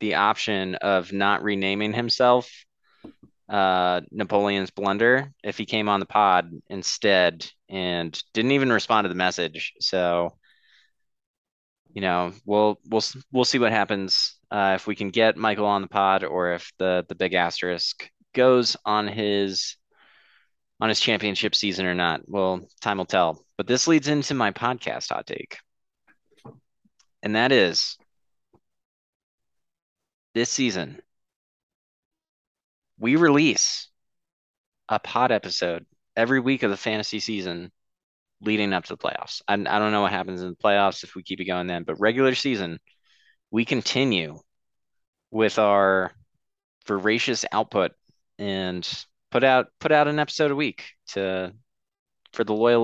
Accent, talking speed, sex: American, 145 wpm, male